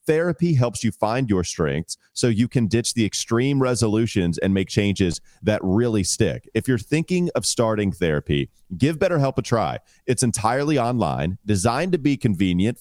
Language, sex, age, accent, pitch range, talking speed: English, male, 30-49, American, 95-120 Hz, 170 wpm